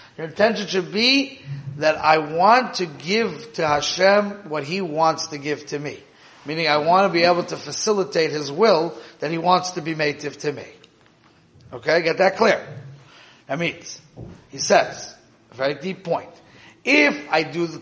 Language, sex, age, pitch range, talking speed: English, male, 40-59, 150-195 Hz, 175 wpm